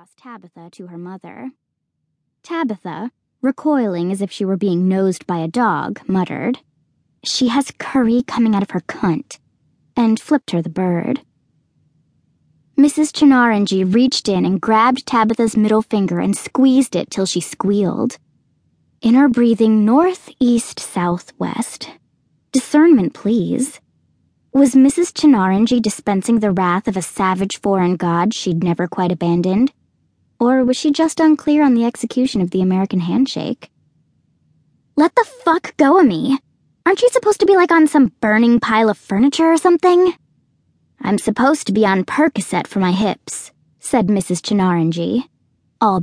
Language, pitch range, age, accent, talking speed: English, 190-265 Hz, 10-29, American, 145 wpm